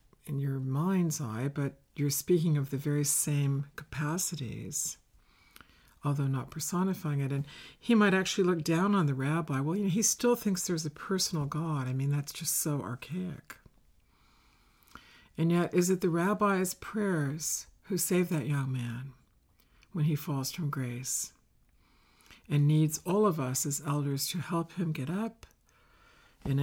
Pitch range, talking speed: 140-180 Hz, 160 wpm